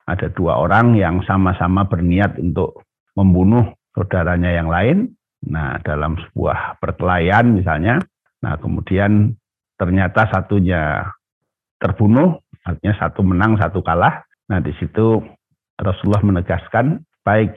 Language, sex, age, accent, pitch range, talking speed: Indonesian, male, 60-79, native, 90-110 Hz, 110 wpm